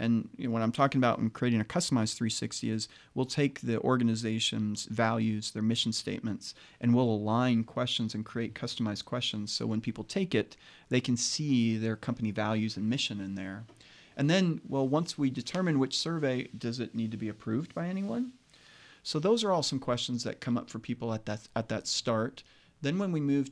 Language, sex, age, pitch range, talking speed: English, male, 40-59, 110-135 Hz, 195 wpm